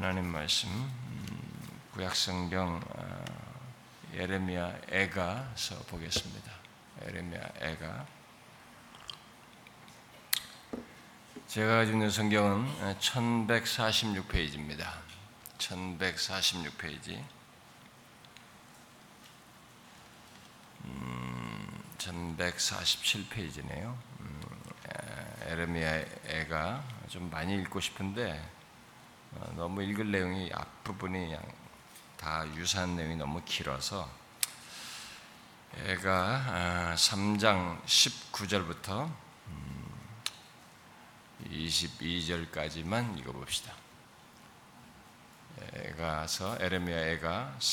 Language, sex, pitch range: Korean, male, 80-105 Hz